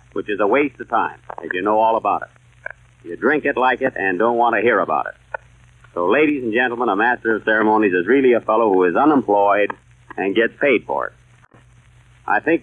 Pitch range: 100-125 Hz